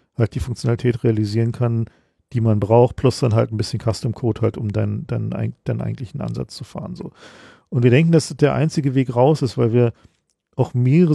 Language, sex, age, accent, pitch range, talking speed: German, male, 40-59, German, 120-150 Hz, 210 wpm